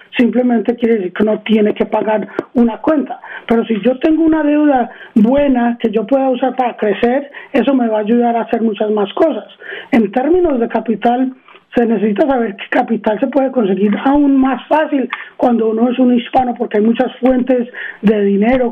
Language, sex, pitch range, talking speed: Spanish, male, 225-260 Hz, 190 wpm